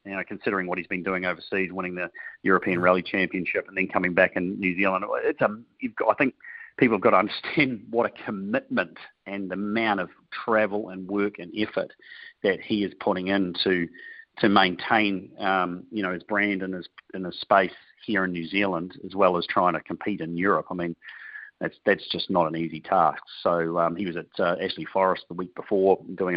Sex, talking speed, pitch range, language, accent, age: male, 215 wpm, 90-100 Hz, English, Australian, 40-59